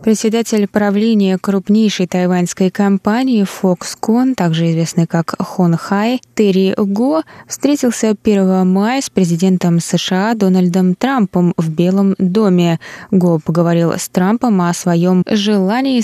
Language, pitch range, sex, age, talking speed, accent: Russian, 175-225 Hz, female, 20-39, 115 wpm, native